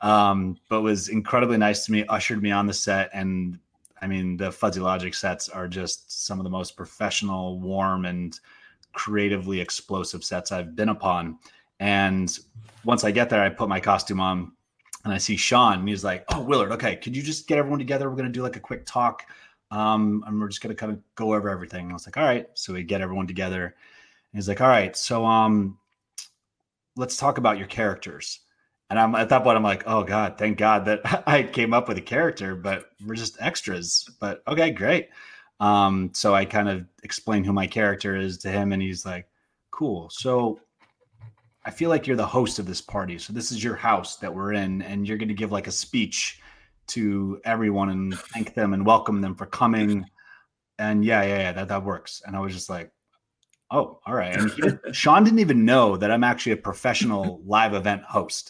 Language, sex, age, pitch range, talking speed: English, male, 30-49, 95-110 Hz, 210 wpm